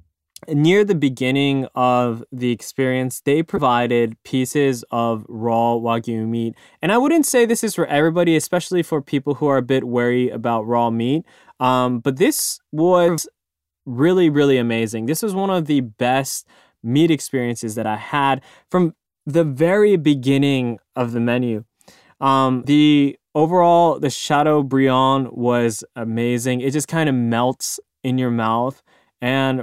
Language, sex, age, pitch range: Japanese, male, 20-39, 120-155 Hz